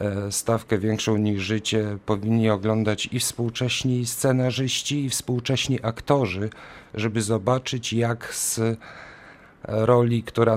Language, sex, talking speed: Polish, male, 100 wpm